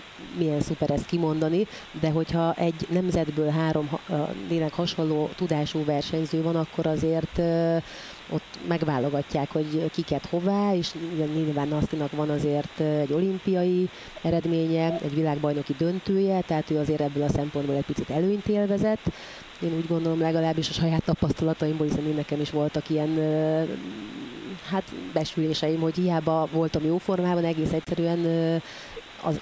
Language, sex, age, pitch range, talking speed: Hungarian, female, 30-49, 150-165 Hz, 135 wpm